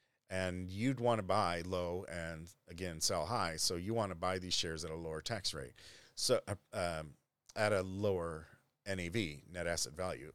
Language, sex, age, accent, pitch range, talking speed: English, male, 40-59, American, 85-105 Hz, 185 wpm